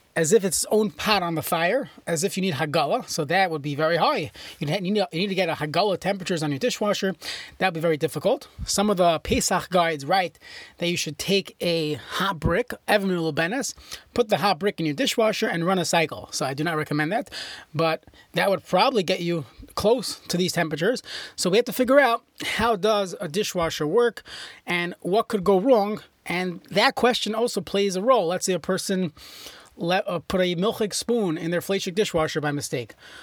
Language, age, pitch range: English, 30-49, 165-205 Hz